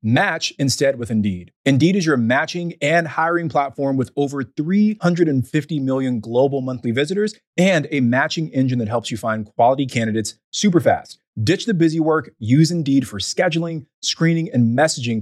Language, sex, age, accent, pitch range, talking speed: English, male, 30-49, American, 115-160 Hz, 160 wpm